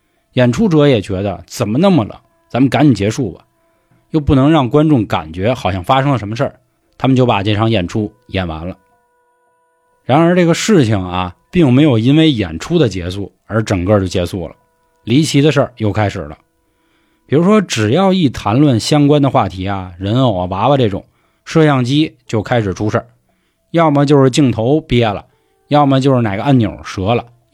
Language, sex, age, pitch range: Chinese, male, 20-39, 105-150 Hz